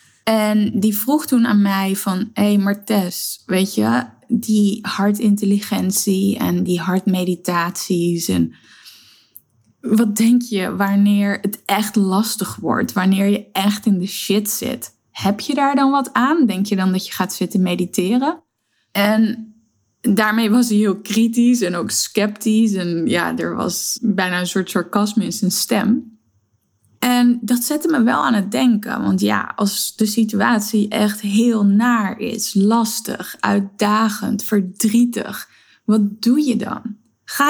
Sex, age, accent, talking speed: female, 10-29, Dutch, 145 wpm